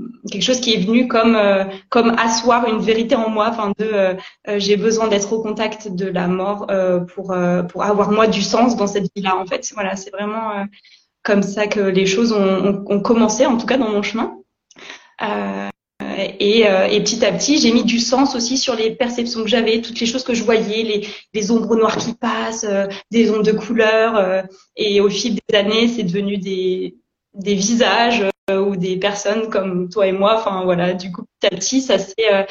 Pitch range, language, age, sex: 195-225 Hz, French, 20-39, female